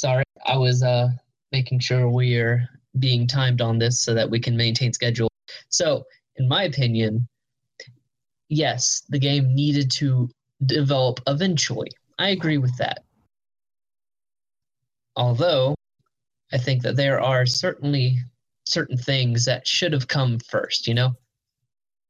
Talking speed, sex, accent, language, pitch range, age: 130 wpm, male, American, English, 125-140 Hz, 20-39